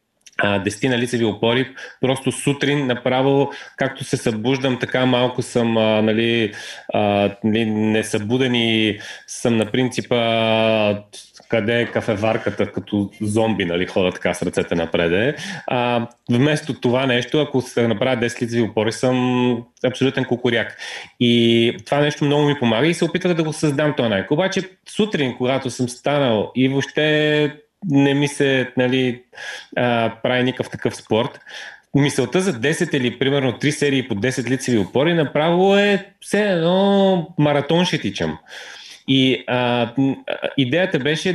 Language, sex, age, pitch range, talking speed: Bulgarian, male, 30-49, 115-150 Hz, 135 wpm